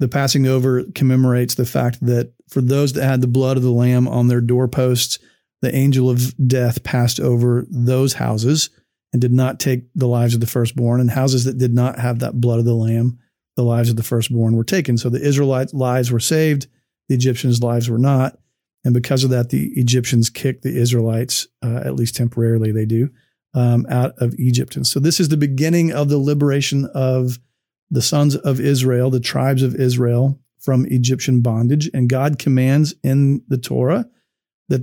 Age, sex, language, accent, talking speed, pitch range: 40-59, male, English, American, 195 wpm, 120-135 Hz